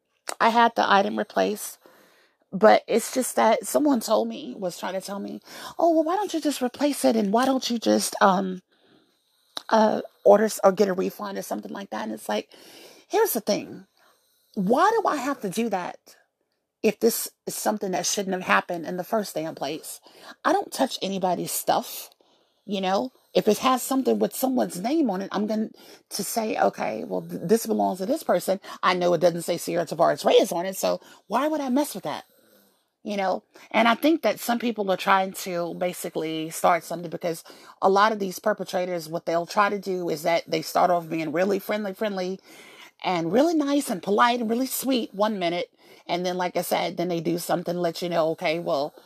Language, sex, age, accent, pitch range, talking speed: English, female, 30-49, American, 180-240 Hz, 205 wpm